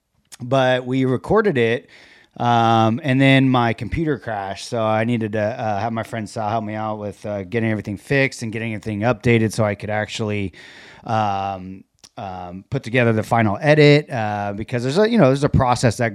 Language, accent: English, American